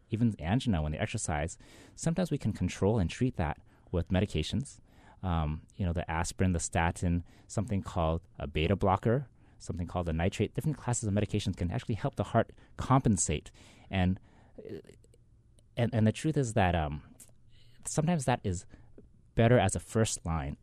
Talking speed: 165 wpm